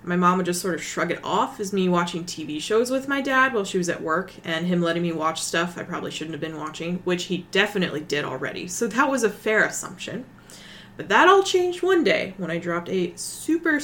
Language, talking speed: English, 245 wpm